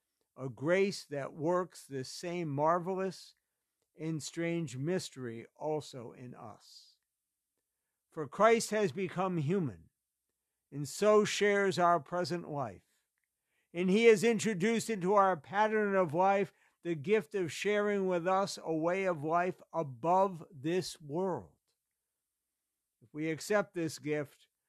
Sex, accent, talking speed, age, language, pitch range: male, American, 125 wpm, 60-79, English, 150-200 Hz